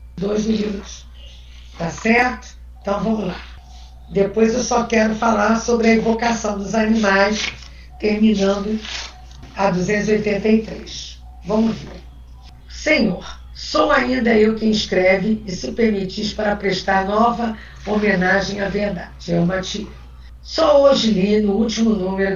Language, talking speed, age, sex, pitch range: Portuguese, 125 wpm, 50-69, female, 180-225 Hz